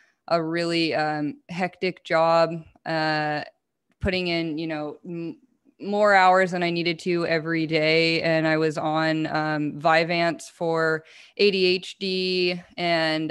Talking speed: 115 wpm